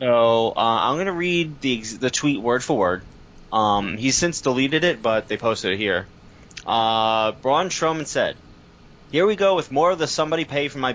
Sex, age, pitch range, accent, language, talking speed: male, 20-39, 110-145 Hz, American, English, 205 wpm